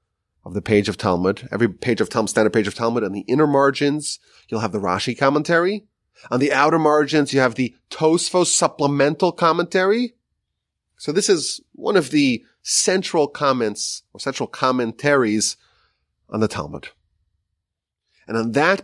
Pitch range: 95-150 Hz